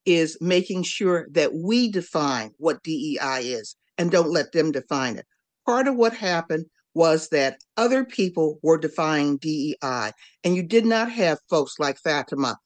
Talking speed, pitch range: 160 wpm, 155-205 Hz